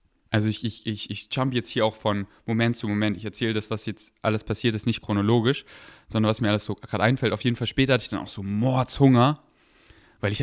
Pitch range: 105-130 Hz